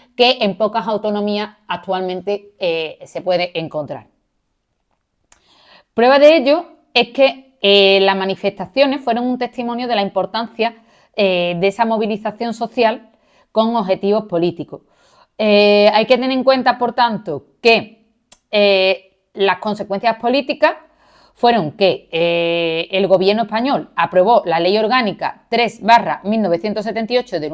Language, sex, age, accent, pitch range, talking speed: Spanish, female, 30-49, Spanish, 195-245 Hz, 125 wpm